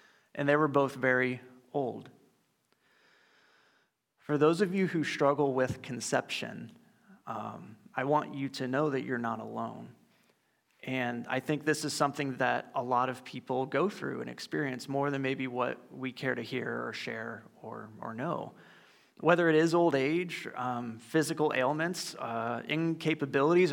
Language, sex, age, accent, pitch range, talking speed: English, male, 30-49, American, 130-170 Hz, 155 wpm